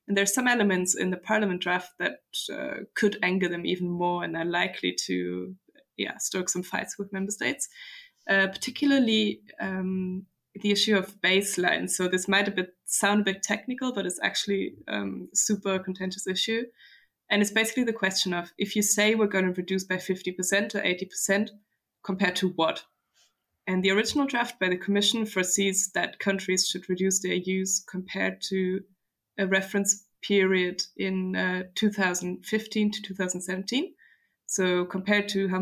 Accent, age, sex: German, 20-39, female